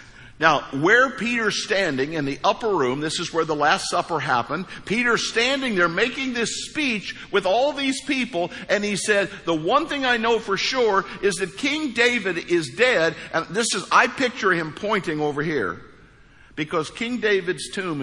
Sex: male